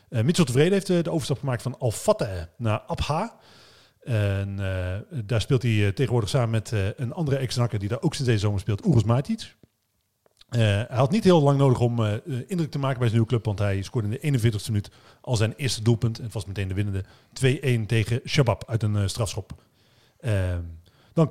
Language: Dutch